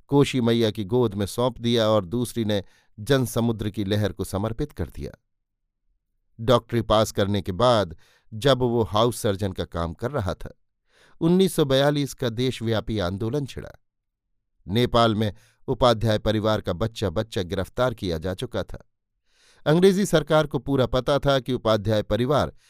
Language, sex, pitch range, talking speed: Hindi, male, 105-130 Hz, 150 wpm